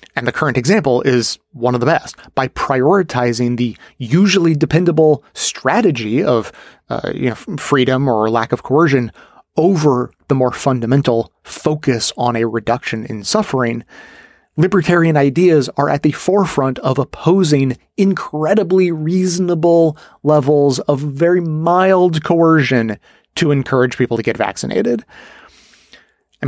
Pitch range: 125-170 Hz